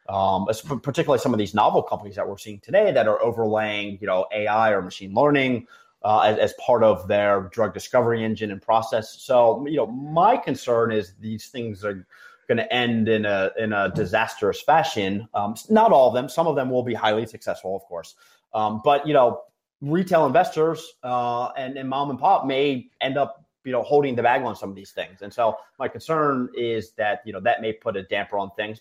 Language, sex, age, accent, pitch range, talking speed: English, male, 30-49, American, 105-135 Hz, 215 wpm